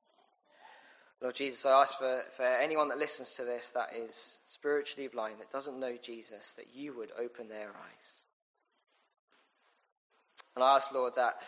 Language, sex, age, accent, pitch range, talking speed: English, male, 20-39, British, 120-150 Hz, 155 wpm